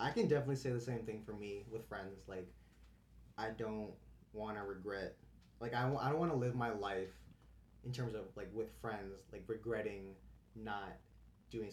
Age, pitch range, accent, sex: 20-39, 95-120 Hz, American, male